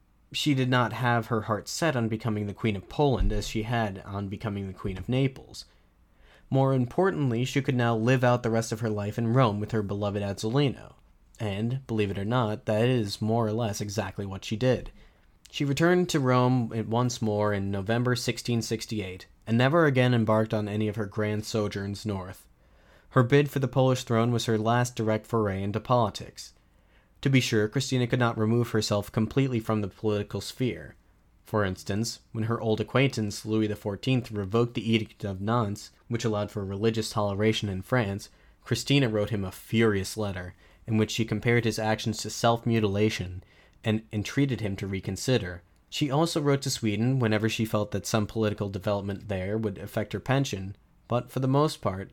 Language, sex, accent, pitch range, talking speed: English, male, American, 100-120 Hz, 185 wpm